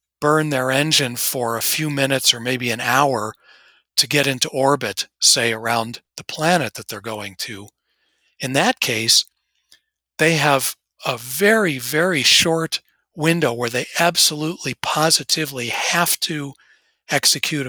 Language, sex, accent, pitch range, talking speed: English, male, American, 125-165 Hz, 135 wpm